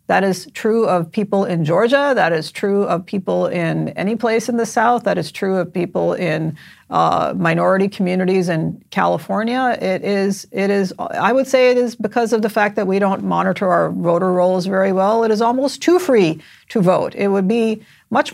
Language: English